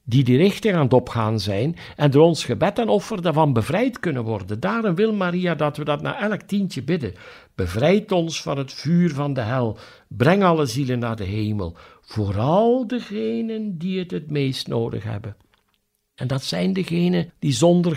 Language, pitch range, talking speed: Dutch, 115-175 Hz, 185 wpm